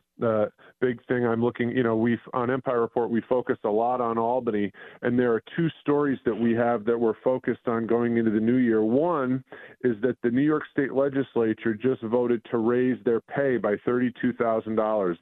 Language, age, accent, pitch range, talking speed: English, 40-59, American, 115-135 Hz, 195 wpm